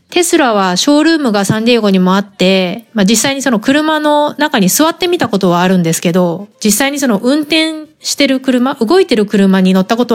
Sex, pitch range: female, 190-275 Hz